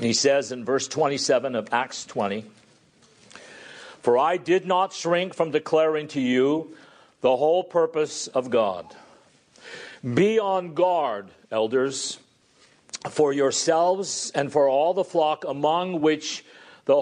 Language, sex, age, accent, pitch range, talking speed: English, male, 50-69, American, 140-190 Hz, 125 wpm